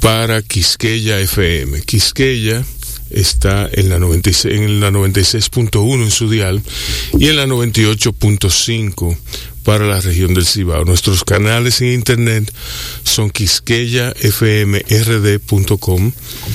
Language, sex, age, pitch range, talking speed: Spanish, male, 40-59, 95-120 Hz, 100 wpm